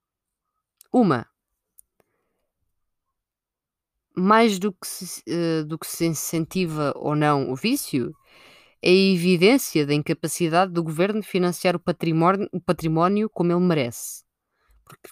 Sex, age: female, 20-39